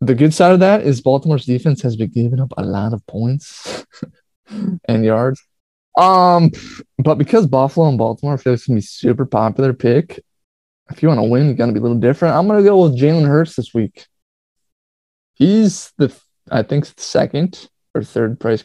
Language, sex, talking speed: English, male, 195 wpm